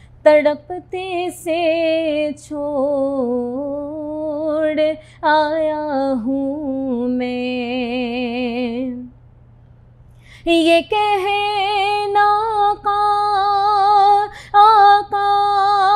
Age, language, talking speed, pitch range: 20-39, Urdu, 40 wpm, 265-350 Hz